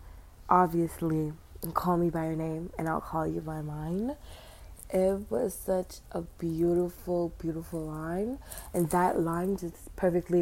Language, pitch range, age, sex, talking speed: English, 140-175 Hz, 20-39, female, 140 wpm